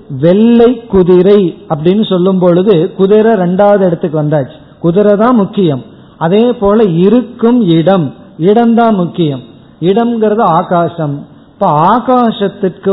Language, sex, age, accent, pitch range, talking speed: Tamil, male, 50-69, native, 165-220 Hz, 100 wpm